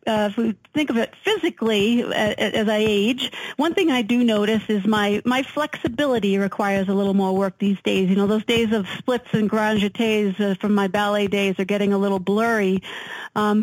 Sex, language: female, English